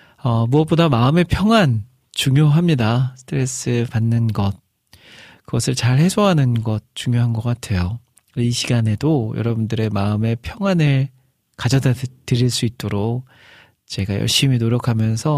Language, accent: Korean, native